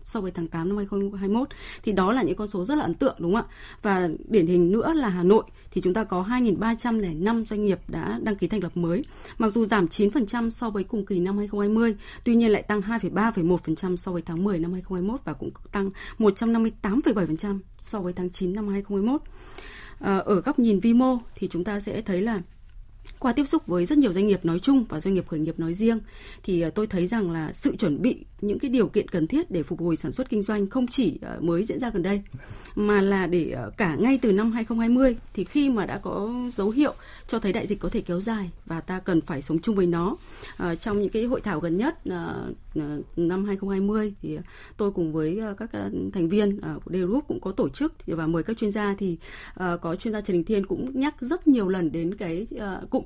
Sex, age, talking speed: female, 20-39, 225 wpm